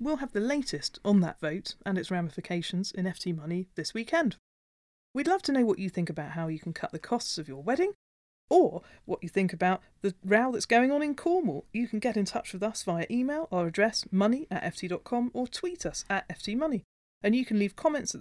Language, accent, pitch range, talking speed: English, British, 180-255 Hz, 225 wpm